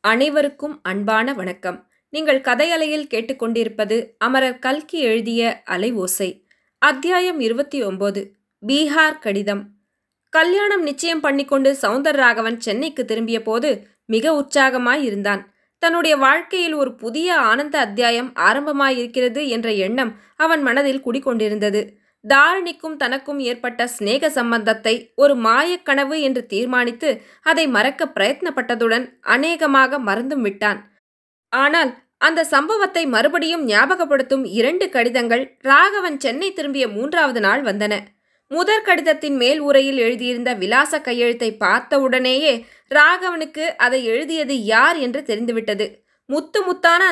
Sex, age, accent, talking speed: female, 20-39, native, 105 wpm